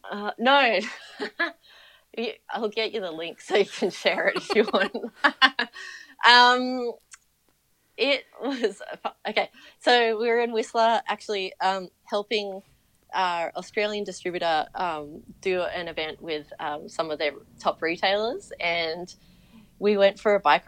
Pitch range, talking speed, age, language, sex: 160-215 Hz, 135 wpm, 30-49, English, female